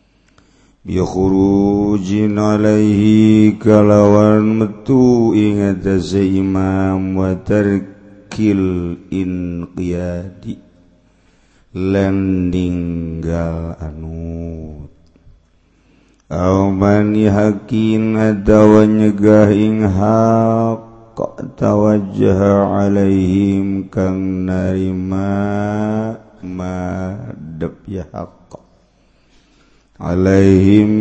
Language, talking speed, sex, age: Indonesian, 40 wpm, male, 50-69